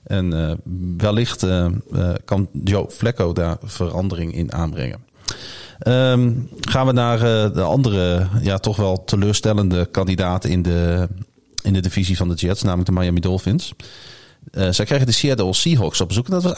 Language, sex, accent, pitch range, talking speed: Dutch, male, Dutch, 95-125 Hz, 170 wpm